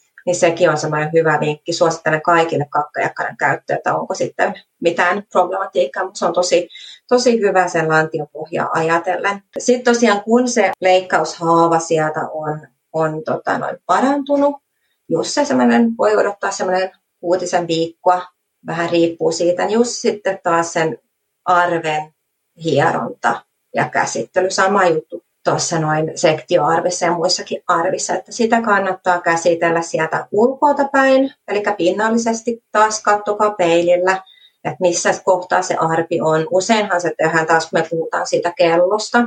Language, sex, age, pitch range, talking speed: Finnish, female, 30-49, 165-210 Hz, 135 wpm